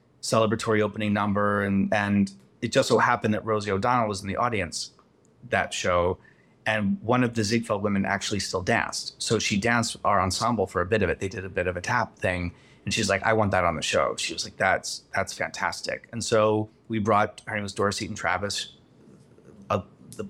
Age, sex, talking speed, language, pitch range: 30-49, male, 210 wpm, English, 95-110 Hz